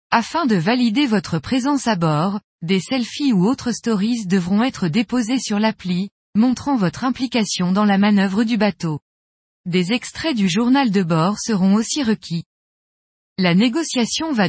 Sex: female